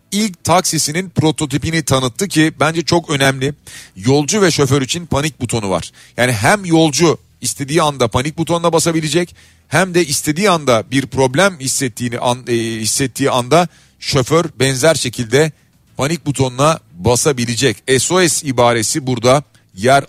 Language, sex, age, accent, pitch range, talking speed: Turkish, male, 40-59, native, 115-155 Hz, 130 wpm